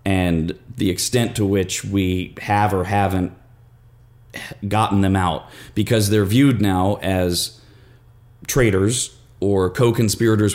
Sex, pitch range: male, 100-120 Hz